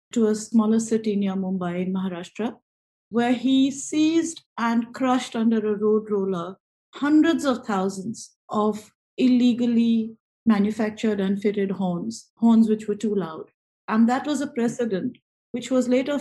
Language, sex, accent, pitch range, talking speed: English, female, Indian, 205-240 Hz, 145 wpm